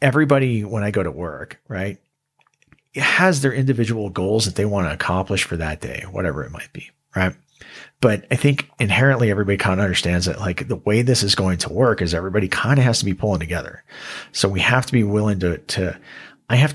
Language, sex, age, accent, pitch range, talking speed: English, male, 40-59, American, 95-125 Hz, 215 wpm